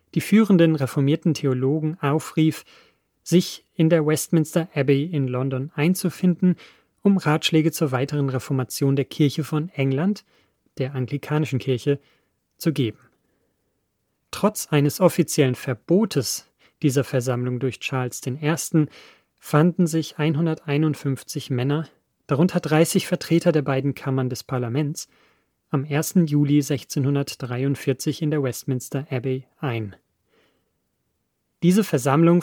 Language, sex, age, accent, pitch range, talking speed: German, male, 30-49, German, 135-160 Hz, 110 wpm